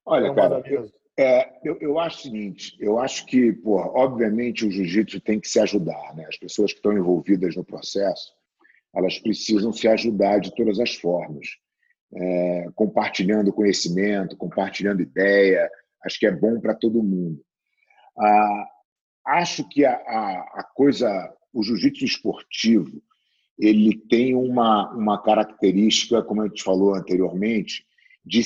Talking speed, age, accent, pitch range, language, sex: 145 wpm, 40-59, Brazilian, 105-145 Hz, English, male